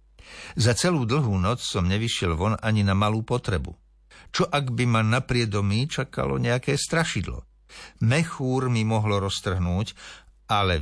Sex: male